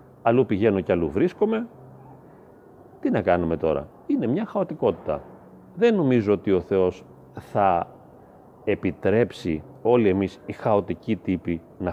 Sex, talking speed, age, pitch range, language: male, 125 wpm, 40-59, 90-130 Hz, Greek